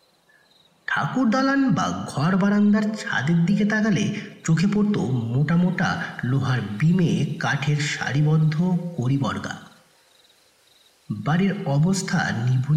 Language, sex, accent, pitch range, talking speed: Bengali, male, native, 155-200 Hz, 70 wpm